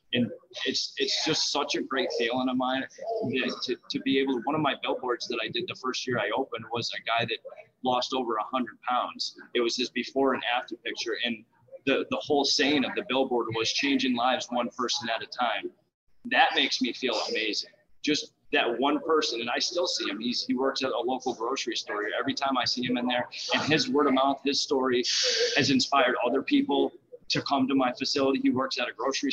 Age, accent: 30-49, American